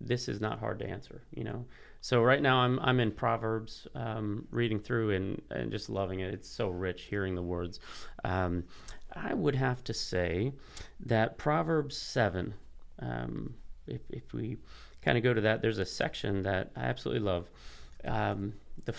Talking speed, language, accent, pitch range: 175 wpm, English, American, 95-120 Hz